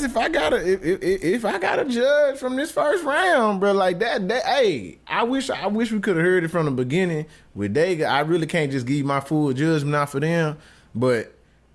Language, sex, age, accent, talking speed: English, male, 20-39, American, 240 wpm